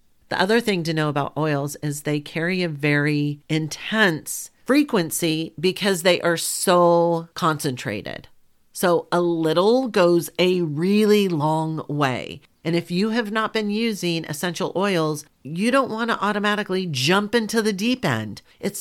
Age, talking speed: 40-59, 150 wpm